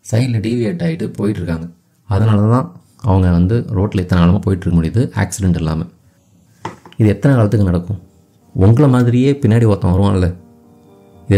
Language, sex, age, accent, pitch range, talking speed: Tamil, male, 30-49, native, 95-125 Hz, 135 wpm